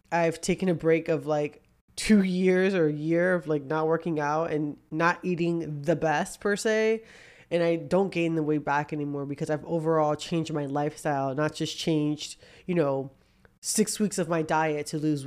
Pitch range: 150-185 Hz